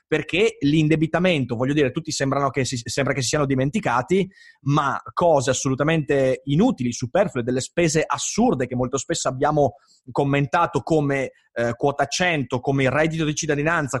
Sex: male